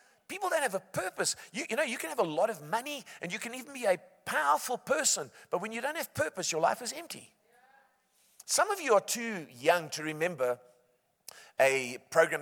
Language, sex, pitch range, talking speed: English, male, 150-230 Hz, 210 wpm